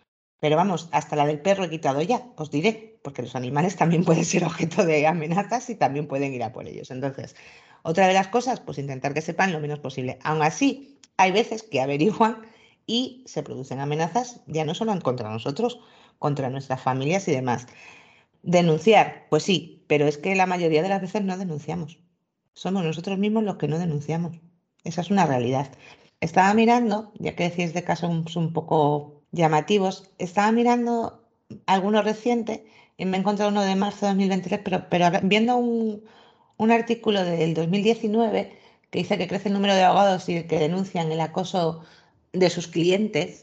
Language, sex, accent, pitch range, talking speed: Spanish, female, Spanish, 155-210 Hz, 180 wpm